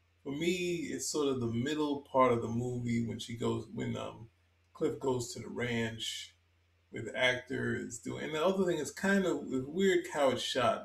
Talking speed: 190 wpm